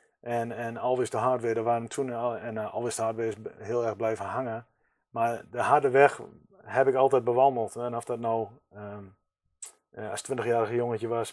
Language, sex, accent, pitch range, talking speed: Dutch, male, Dutch, 115-130 Hz, 205 wpm